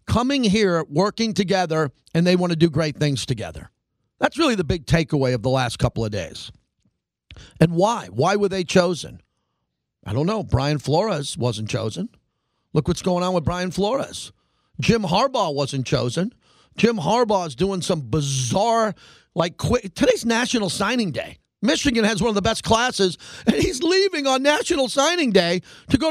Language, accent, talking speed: English, American, 170 wpm